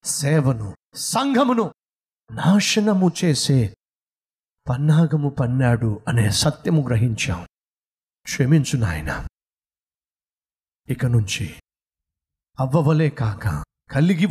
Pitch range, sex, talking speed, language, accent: 100-160 Hz, male, 65 wpm, Telugu, native